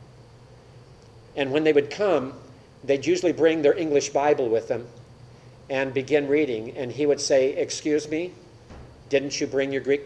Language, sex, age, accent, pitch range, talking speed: English, male, 50-69, American, 120-155 Hz, 160 wpm